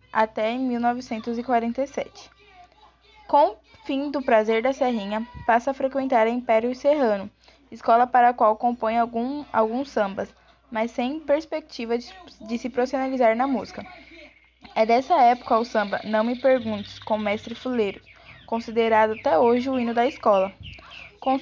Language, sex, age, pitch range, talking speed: Portuguese, female, 10-29, 220-260 Hz, 145 wpm